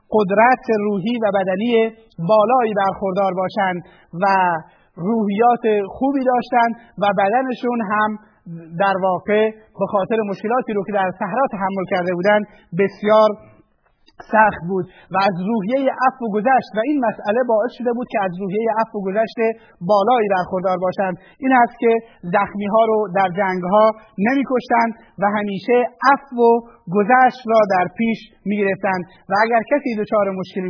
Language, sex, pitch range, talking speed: Persian, male, 200-230 Hz, 145 wpm